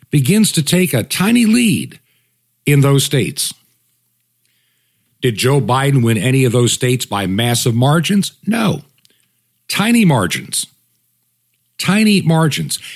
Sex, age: male, 50-69